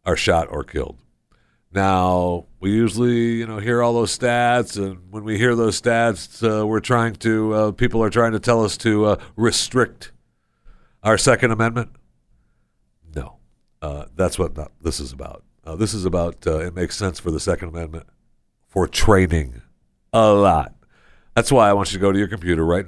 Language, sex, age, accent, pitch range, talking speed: English, male, 60-79, American, 80-105 Hz, 185 wpm